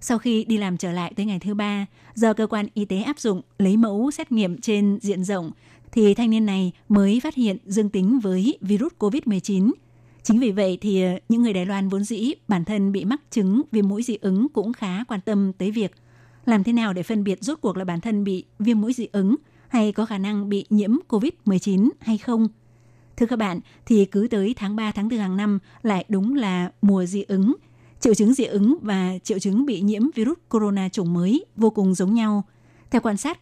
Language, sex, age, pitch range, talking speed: Vietnamese, female, 20-39, 195-230 Hz, 225 wpm